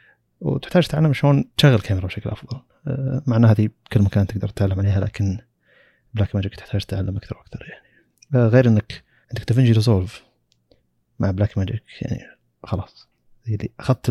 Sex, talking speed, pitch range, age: male, 145 wpm, 100-115 Hz, 30-49